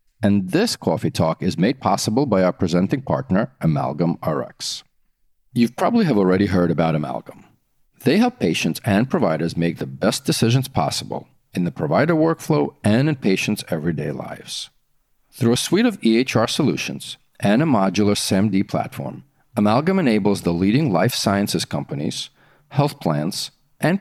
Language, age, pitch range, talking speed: English, 40-59, 90-135 Hz, 150 wpm